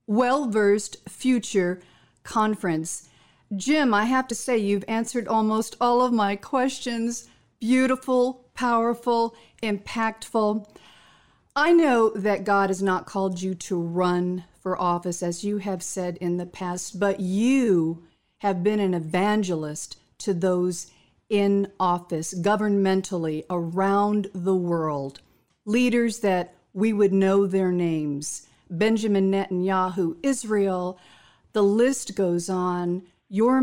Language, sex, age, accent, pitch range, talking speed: English, female, 50-69, American, 180-215 Hz, 120 wpm